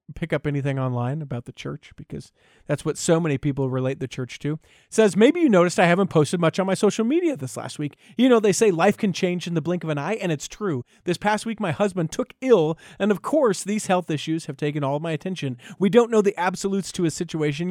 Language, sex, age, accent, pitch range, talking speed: English, male, 40-59, American, 140-200 Hz, 260 wpm